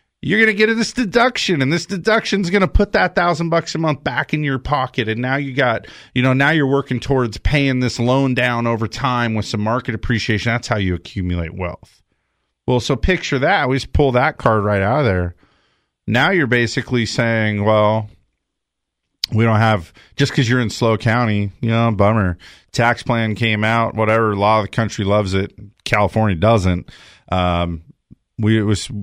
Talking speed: 195 wpm